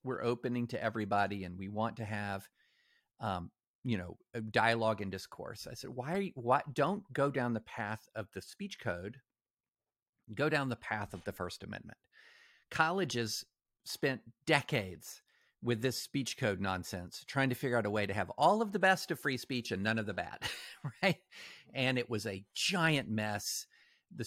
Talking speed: 180 wpm